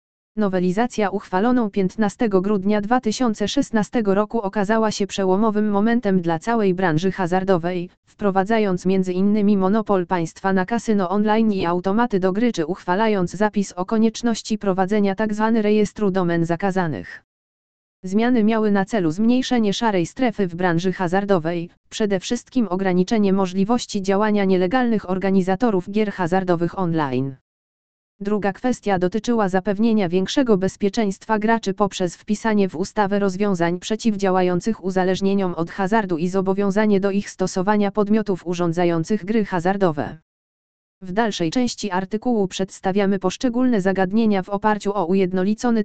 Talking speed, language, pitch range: 120 wpm, Polish, 185-215 Hz